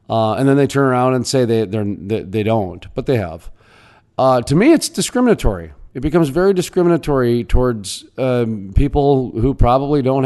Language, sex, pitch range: English, male, 110-145 Hz